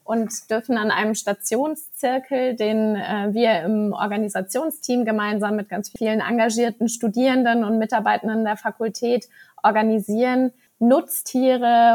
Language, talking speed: German, 110 wpm